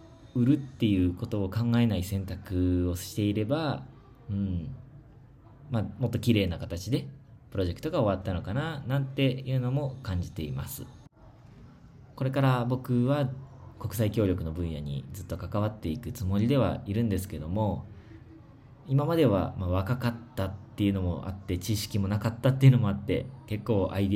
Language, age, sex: Japanese, 20-39, male